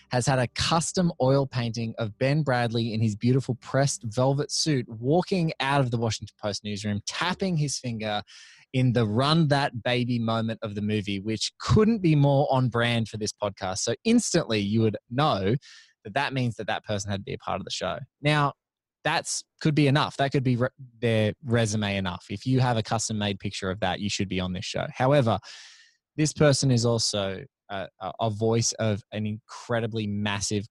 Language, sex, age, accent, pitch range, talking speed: English, male, 20-39, Australian, 105-130 Hz, 195 wpm